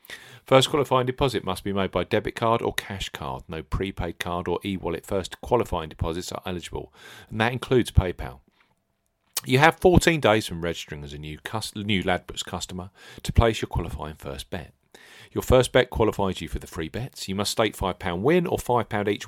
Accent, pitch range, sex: British, 85-120 Hz, male